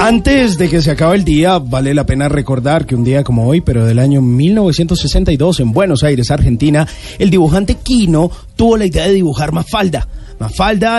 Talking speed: 190 wpm